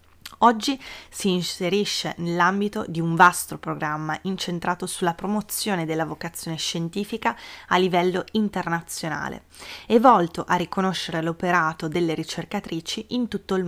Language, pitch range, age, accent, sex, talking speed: Italian, 170-205 Hz, 20-39, native, female, 120 wpm